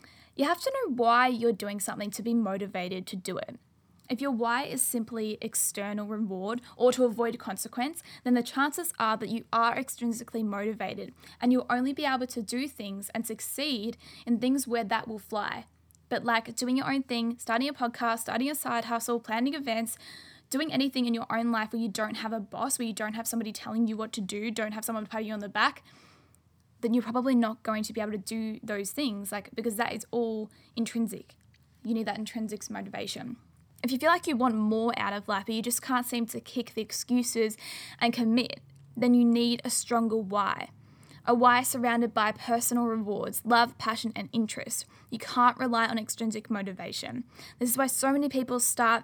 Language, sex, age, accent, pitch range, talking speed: English, female, 10-29, Australian, 220-245 Hz, 205 wpm